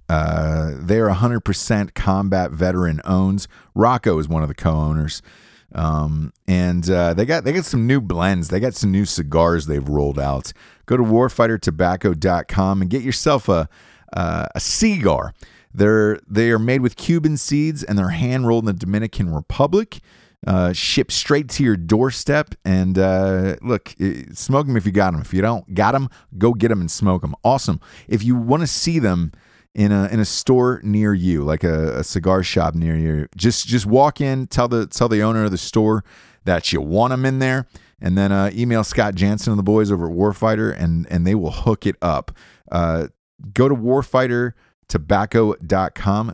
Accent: American